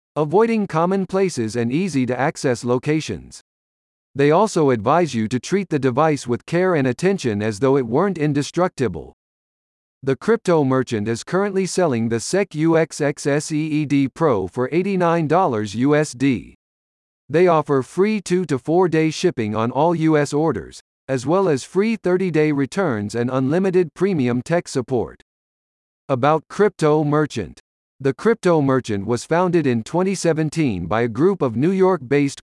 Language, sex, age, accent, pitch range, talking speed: English, male, 50-69, American, 125-175 Hz, 135 wpm